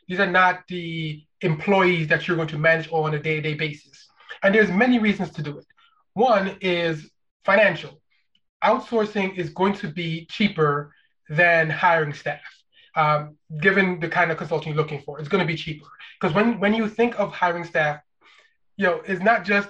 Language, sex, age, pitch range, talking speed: English, male, 20-39, 160-195 Hz, 185 wpm